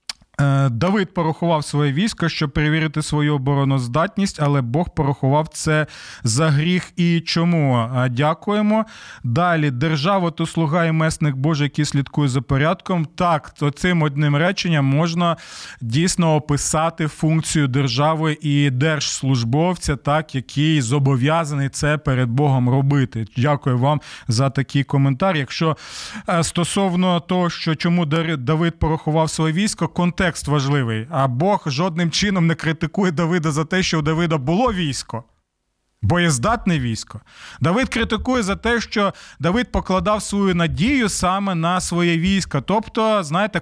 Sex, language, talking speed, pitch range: male, Ukrainian, 130 wpm, 145-185 Hz